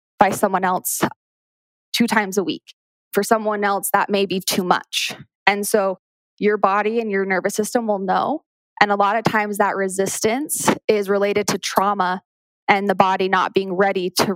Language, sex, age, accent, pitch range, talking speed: English, female, 20-39, American, 190-215 Hz, 180 wpm